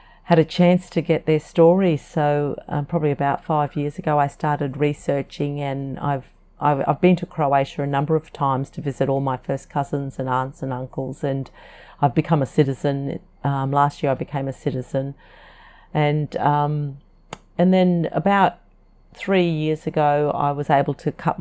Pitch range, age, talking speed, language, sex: 140-165 Hz, 40-59, 175 wpm, English, female